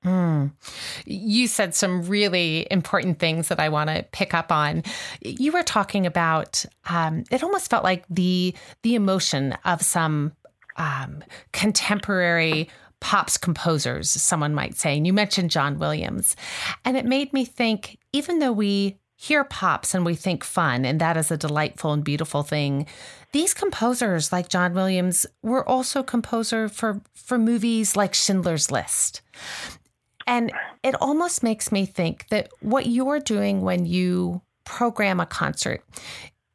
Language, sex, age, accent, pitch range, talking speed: English, female, 30-49, American, 165-230 Hz, 150 wpm